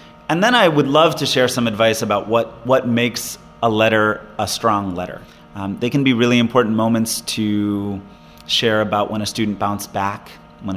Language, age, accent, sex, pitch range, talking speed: English, 30-49, American, male, 100-130 Hz, 190 wpm